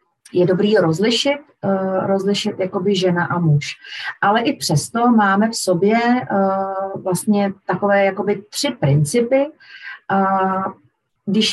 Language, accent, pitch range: Czech, native, 180-215 Hz